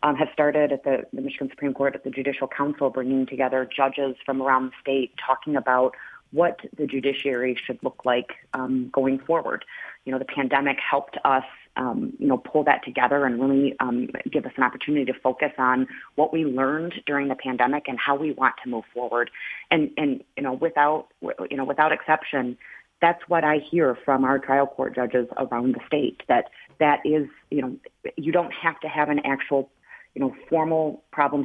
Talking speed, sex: 195 wpm, female